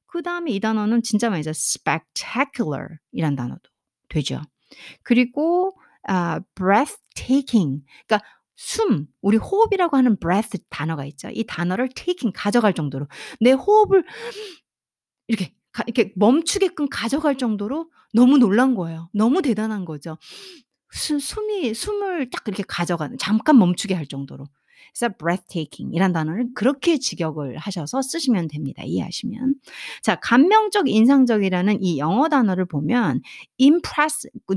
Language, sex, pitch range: Korean, female, 190-290 Hz